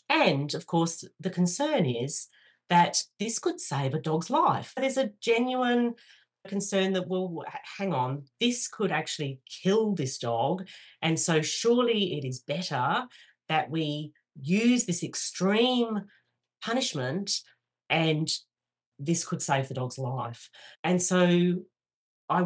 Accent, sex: Australian, female